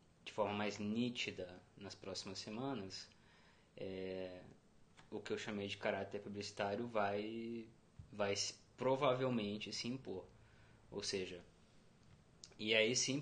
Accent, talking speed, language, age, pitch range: Brazilian, 120 wpm, Portuguese, 20-39, 100-115 Hz